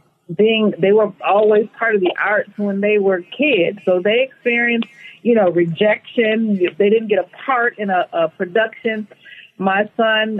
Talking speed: 165 wpm